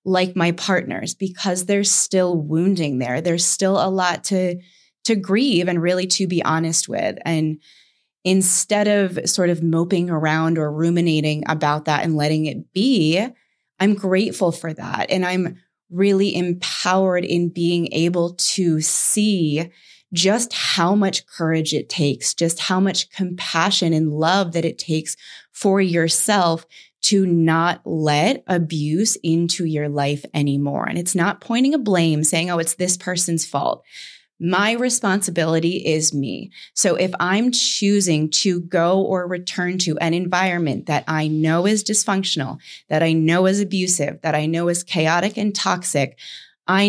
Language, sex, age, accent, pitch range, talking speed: English, female, 20-39, American, 160-185 Hz, 150 wpm